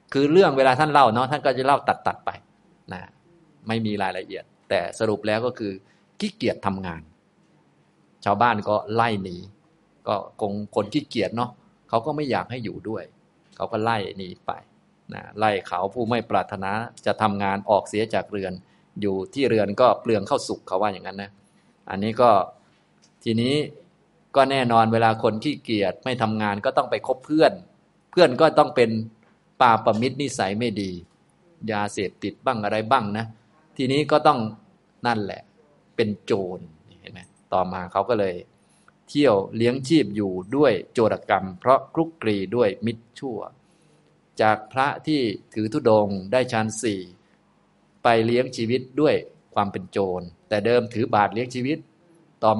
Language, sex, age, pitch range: Thai, male, 20-39, 100-130 Hz